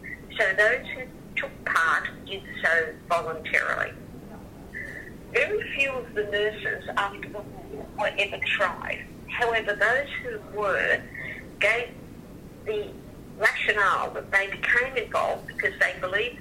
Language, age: English, 50-69